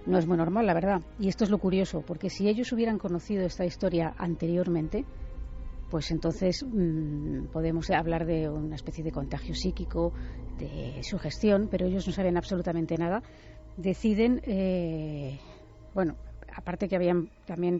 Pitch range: 165-200 Hz